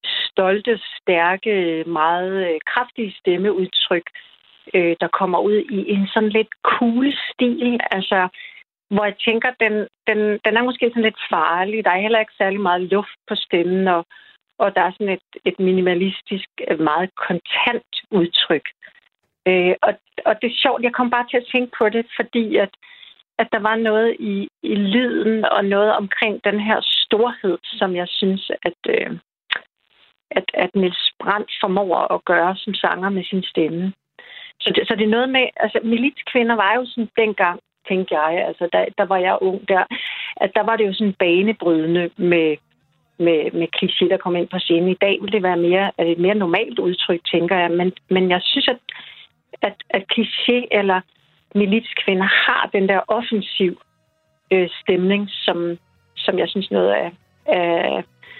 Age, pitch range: 60-79, 180-225 Hz